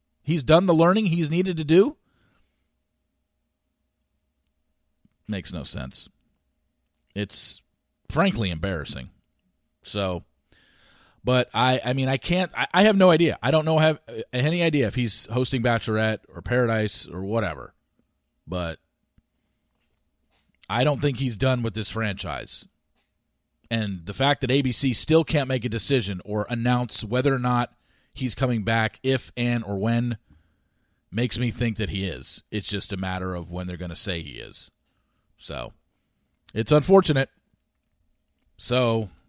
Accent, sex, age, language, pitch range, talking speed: American, male, 40-59, English, 90-135 Hz, 140 wpm